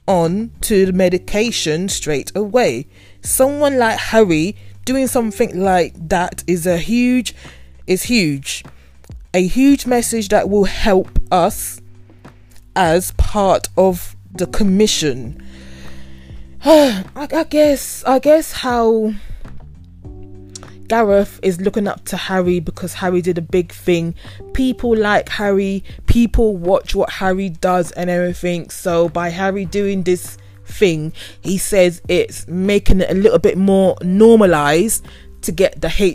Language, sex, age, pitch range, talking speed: English, female, 20-39, 155-215 Hz, 130 wpm